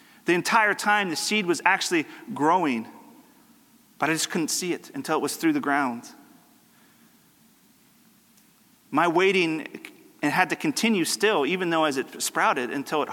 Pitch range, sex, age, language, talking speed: 170-240 Hz, male, 40-59, English, 155 wpm